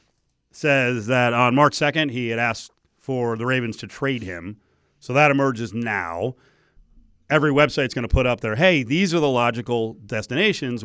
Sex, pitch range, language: male, 110-145 Hz, English